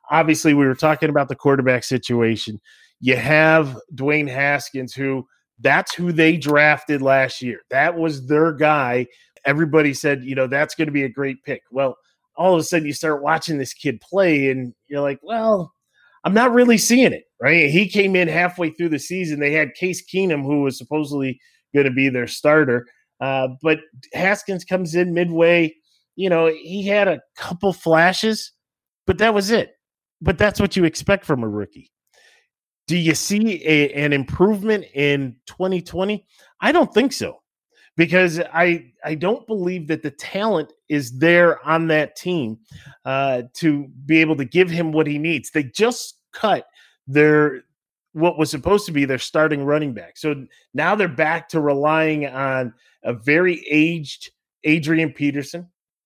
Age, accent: 30-49, American